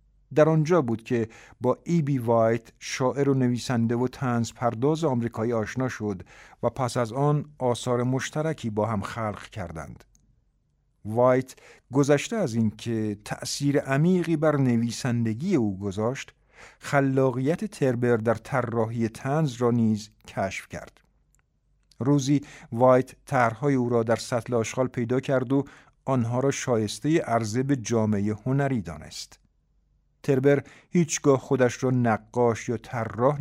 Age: 50-69